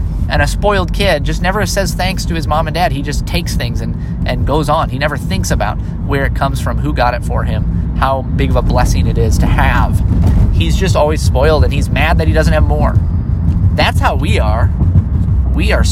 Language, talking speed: English, 230 wpm